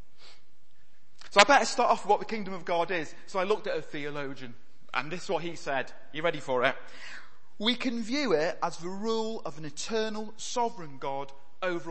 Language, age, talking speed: English, 30-49, 205 wpm